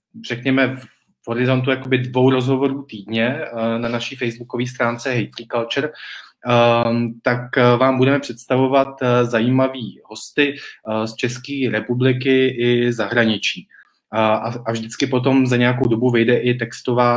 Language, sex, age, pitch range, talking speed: Czech, male, 20-39, 115-130 Hz, 110 wpm